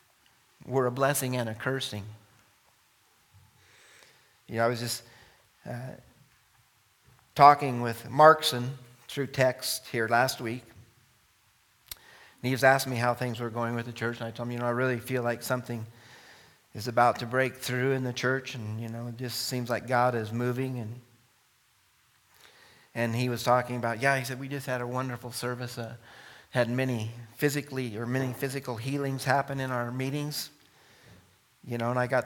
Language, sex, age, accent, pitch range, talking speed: English, male, 40-59, American, 115-130 Hz, 175 wpm